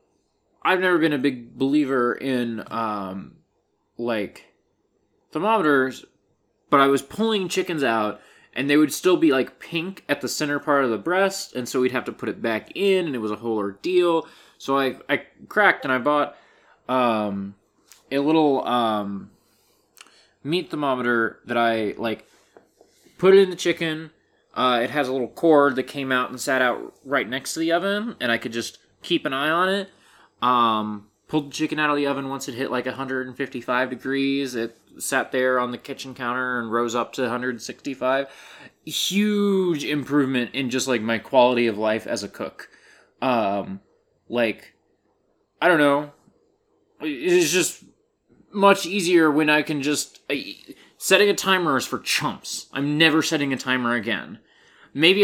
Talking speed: 170 wpm